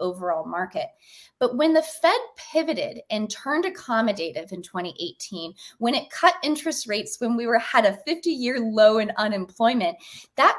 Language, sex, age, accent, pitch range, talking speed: English, female, 20-39, American, 185-260 Hz, 155 wpm